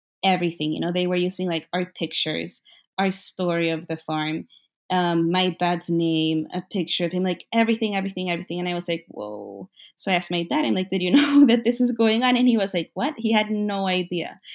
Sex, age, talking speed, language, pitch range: female, 20-39, 225 wpm, English, 175-210 Hz